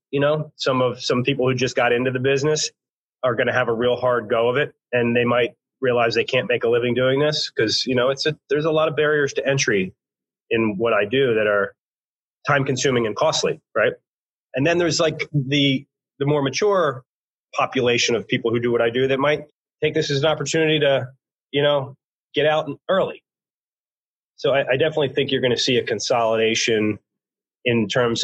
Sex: male